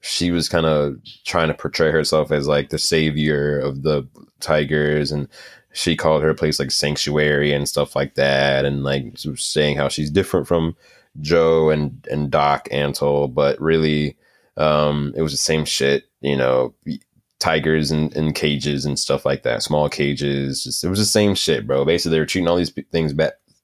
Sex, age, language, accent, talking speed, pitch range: male, 20-39, English, American, 185 wpm, 75-85 Hz